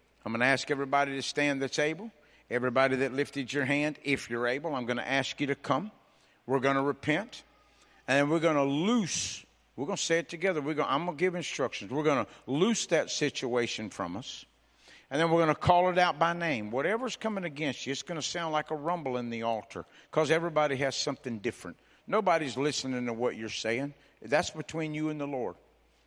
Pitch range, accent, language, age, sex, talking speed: 130-160 Hz, American, English, 50-69, male, 215 wpm